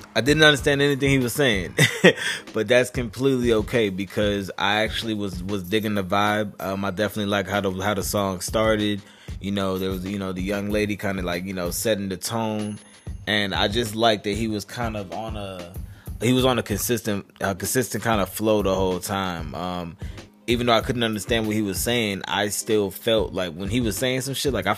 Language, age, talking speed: English, 20-39, 225 wpm